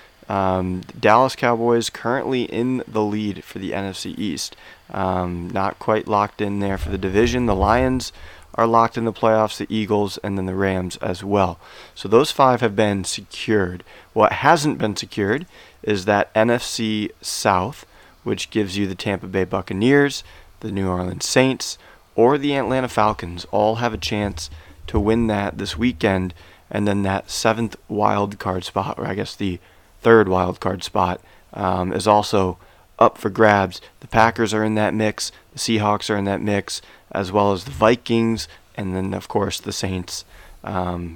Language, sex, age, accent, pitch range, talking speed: English, male, 30-49, American, 95-110 Hz, 170 wpm